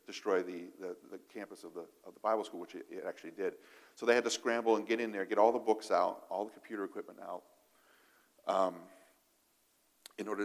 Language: English